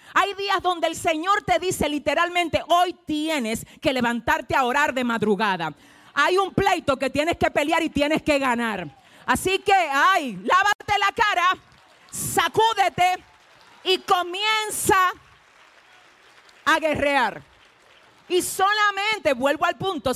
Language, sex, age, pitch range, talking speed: Spanish, female, 40-59, 240-330 Hz, 130 wpm